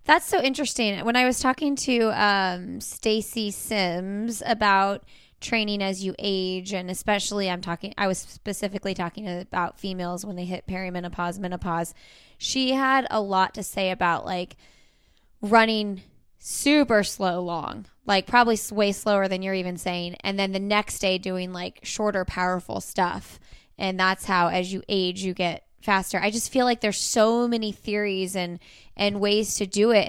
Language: English